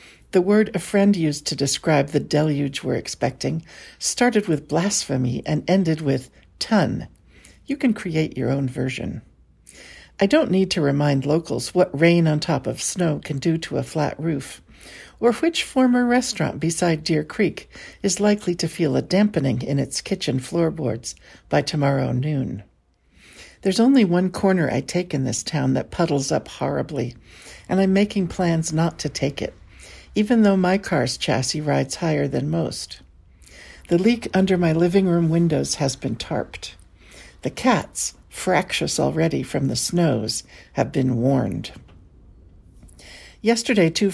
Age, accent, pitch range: 60-79, American, 135-190 Hz